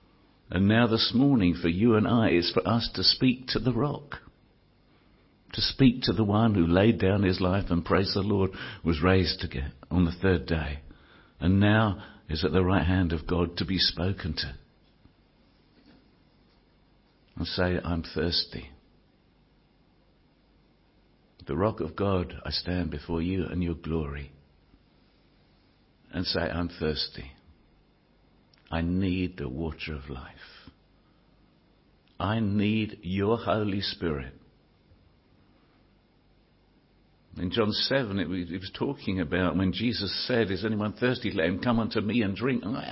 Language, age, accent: English, 60-79, British